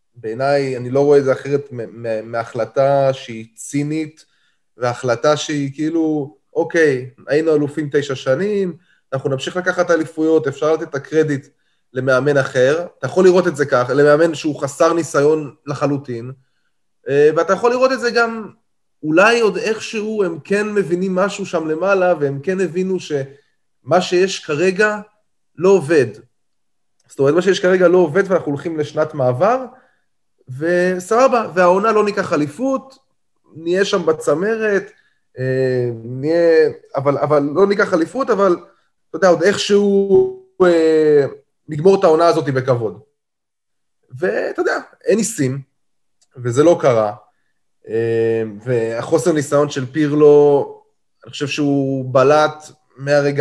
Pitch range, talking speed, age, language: 135-190 Hz, 125 wpm, 20-39, Hebrew